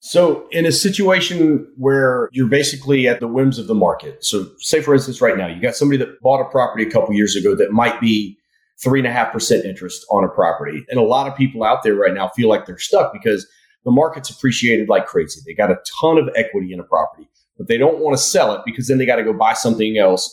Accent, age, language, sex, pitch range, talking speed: American, 30-49, English, male, 110-140 Hz, 245 wpm